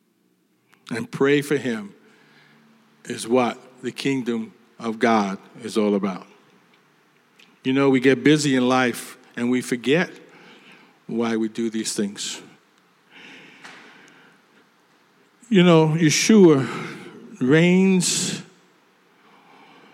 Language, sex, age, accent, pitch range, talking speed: English, male, 50-69, American, 125-170 Hz, 95 wpm